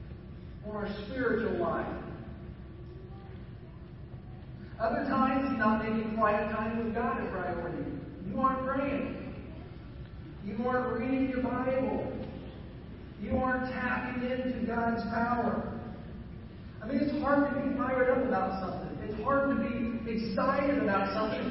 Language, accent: English, American